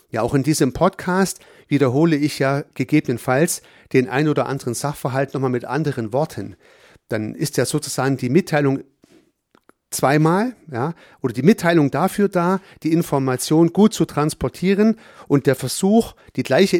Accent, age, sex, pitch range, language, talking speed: German, 40-59, male, 130-175 Hz, German, 145 wpm